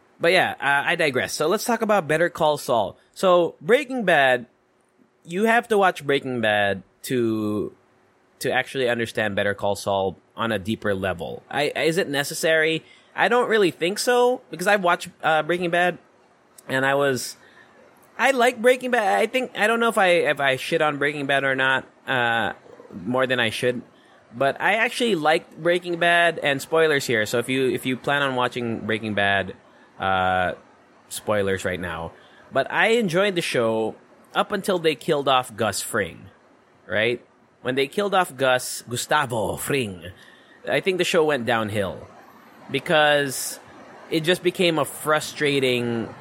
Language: English